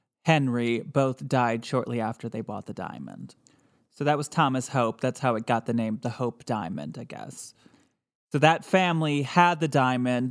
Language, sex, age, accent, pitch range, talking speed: English, male, 20-39, American, 120-145 Hz, 180 wpm